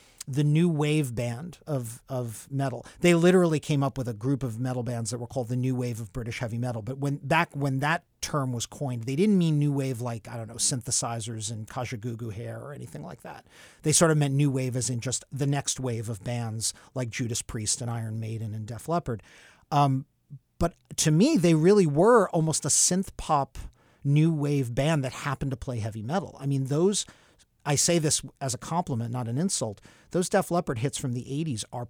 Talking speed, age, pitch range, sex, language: 215 wpm, 40-59, 120-145 Hz, male, English